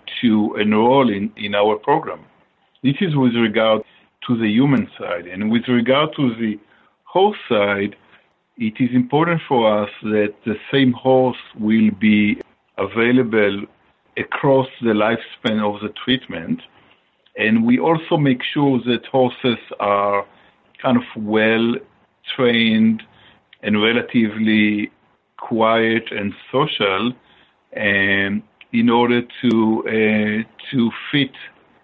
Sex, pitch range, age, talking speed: male, 105-130 Hz, 50-69, 120 wpm